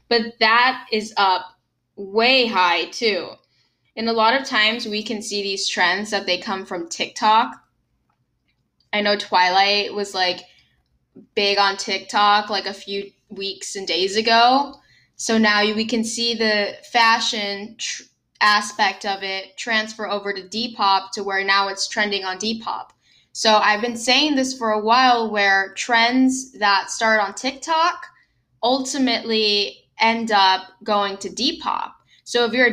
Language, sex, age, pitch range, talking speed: English, female, 10-29, 195-225 Hz, 150 wpm